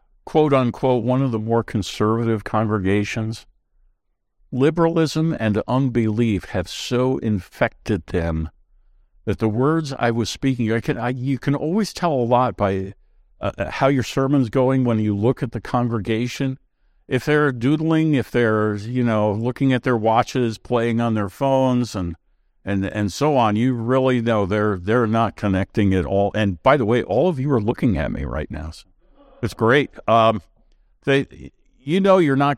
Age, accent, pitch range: 60-79, American, 100-135 Hz